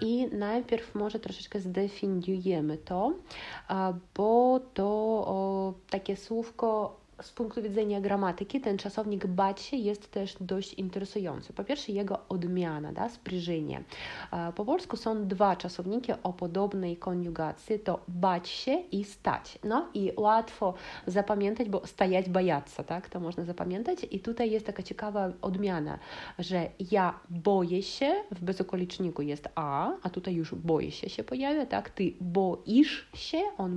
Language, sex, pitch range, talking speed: Polish, female, 175-225 Hz, 140 wpm